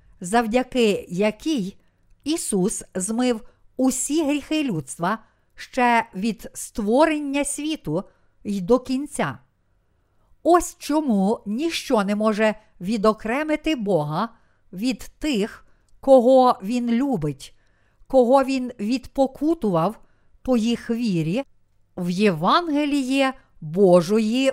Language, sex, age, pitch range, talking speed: Ukrainian, female, 50-69, 190-265 Hz, 85 wpm